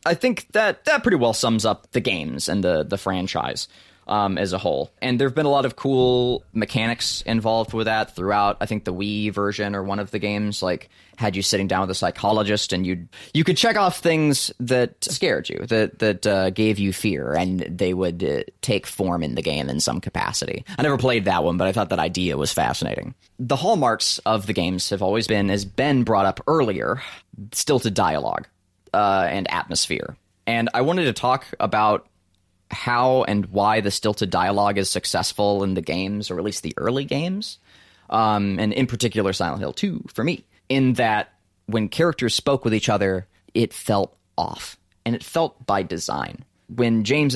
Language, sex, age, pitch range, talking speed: English, male, 20-39, 95-120 Hz, 200 wpm